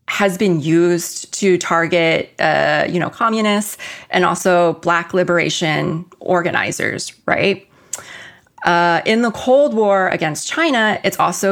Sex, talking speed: female, 125 wpm